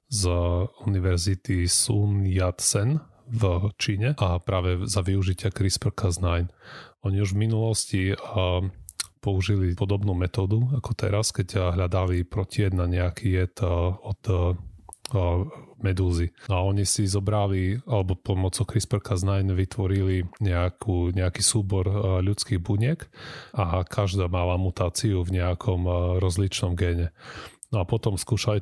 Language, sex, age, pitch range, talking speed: Slovak, male, 30-49, 90-105 Hz, 115 wpm